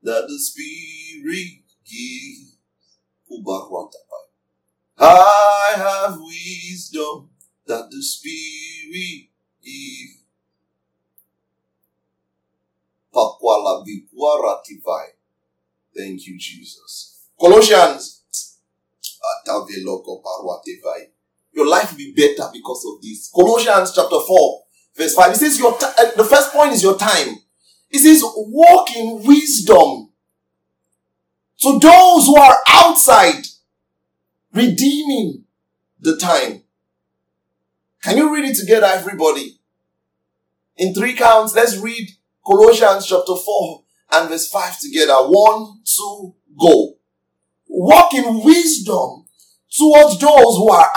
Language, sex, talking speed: English, male, 90 wpm